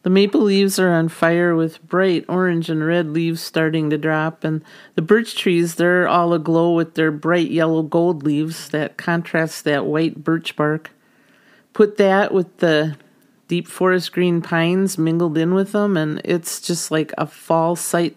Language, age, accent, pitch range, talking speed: English, 40-59, American, 160-190 Hz, 175 wpm